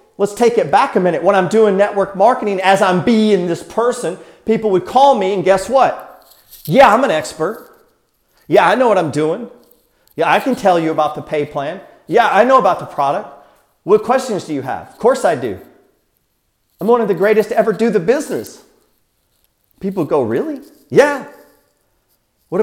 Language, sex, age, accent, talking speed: English, male, 40-59, American, 190 wpm